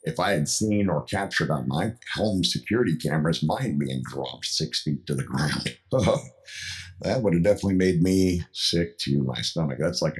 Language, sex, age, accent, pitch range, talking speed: English, male, 50-69, American, 75-105 Hz, 190 wpm